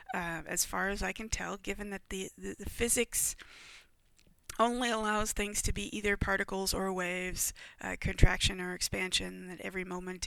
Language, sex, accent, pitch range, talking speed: English, female, American, 180-200 Hz, 170 wpm